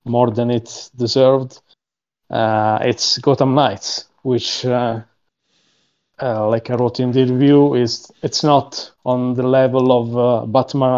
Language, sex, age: English, male, 20-39